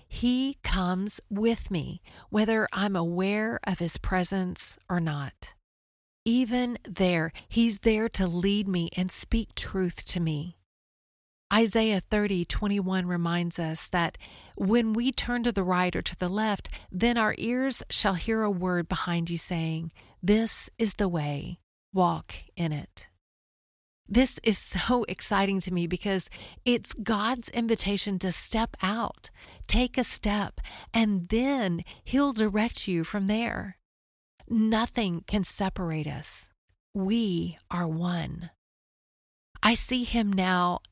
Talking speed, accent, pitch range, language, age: 135 wpm, American, 175-225 Hz, English, 40-59